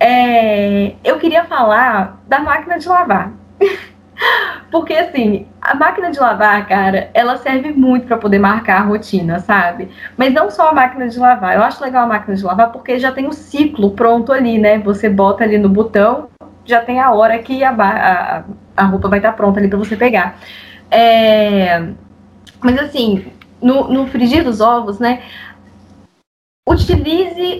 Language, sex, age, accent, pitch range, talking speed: Portuguese, female, 10-29, Brazilian, 210-265 Hz, 160 wpm